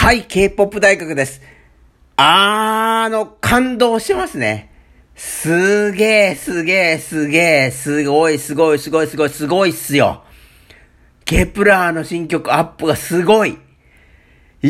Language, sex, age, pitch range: Japanese, male, 50-69, 150-220 Hz